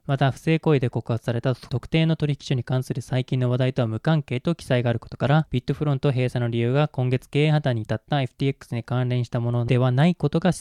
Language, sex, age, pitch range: Japanese, male, 20-39, 120-150 Hz